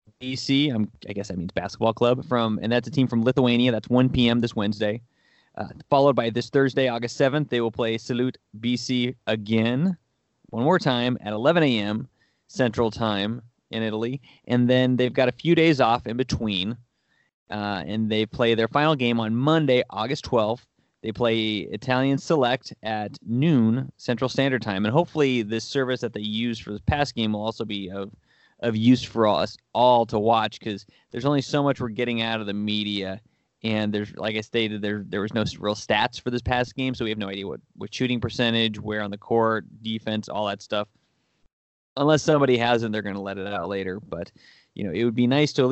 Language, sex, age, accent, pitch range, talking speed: English, male, 20-39, American, 110-130 Hz, 205 wpm